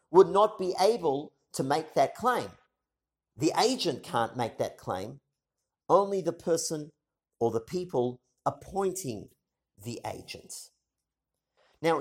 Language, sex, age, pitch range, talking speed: English, male, 50-69, 150-205 Hz, 120 wpm